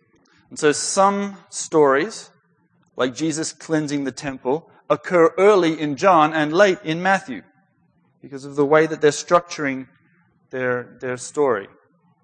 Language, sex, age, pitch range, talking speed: English, male, 40-59, 130-175 Hz, 130 wpm